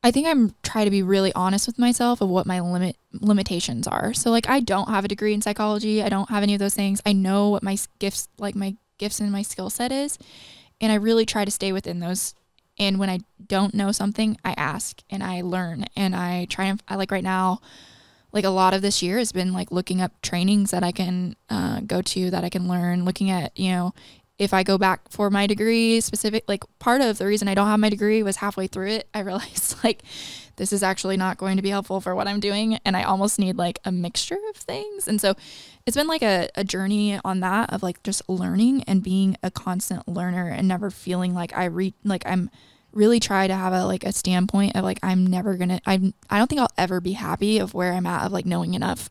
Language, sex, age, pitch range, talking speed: English, female, 20-39, 185-210 Hz, 245 wpm